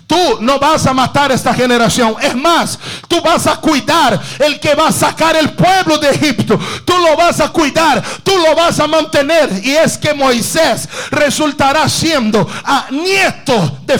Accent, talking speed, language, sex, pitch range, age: Brazilian, 175 wpm, English, male, 210-285 Hz, 50-69